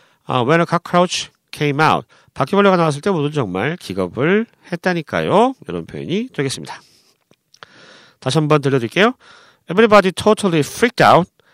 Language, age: Korean, 40-59